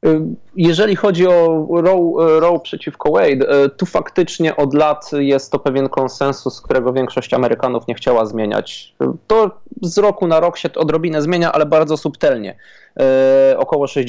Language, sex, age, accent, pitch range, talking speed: Polish, male, 20-39, native, 120-150 Hz, 140 wpm